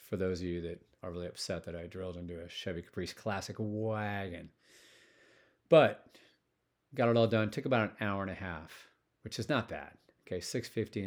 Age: 40-59